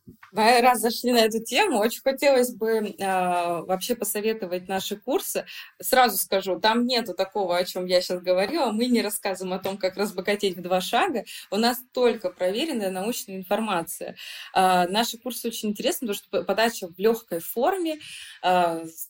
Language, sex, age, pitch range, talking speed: Russian, female, 20-39, 185-230 Hz, 165 wpm